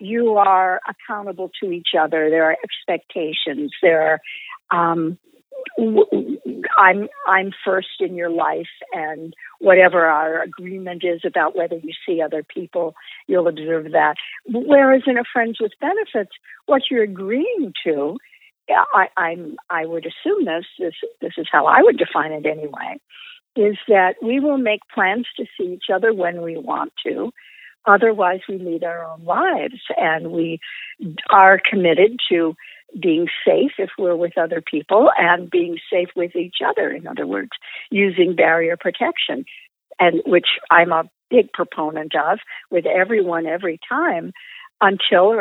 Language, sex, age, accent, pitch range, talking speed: English, female, 60-79, American, 165-220 Hz, 150 wpm